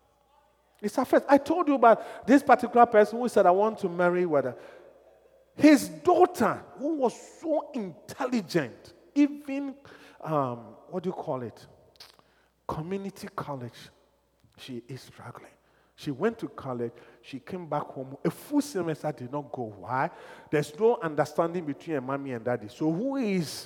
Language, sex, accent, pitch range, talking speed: English, male, Nigerian, 135-225 Hz, 150 wpm